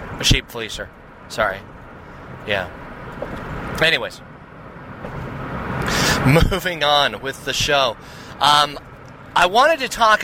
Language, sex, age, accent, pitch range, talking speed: English, male, 30-49, American, 130-160 Hz, 95 wpm